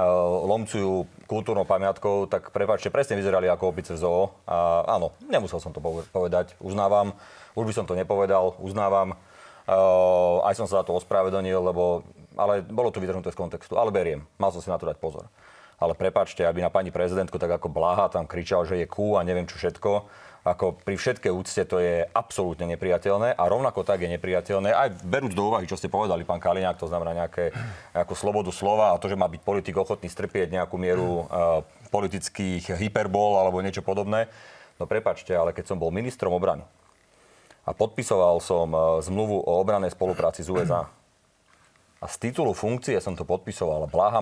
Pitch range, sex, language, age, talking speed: 90-100 Hz, male, Slovak, 30-49, 180 wpm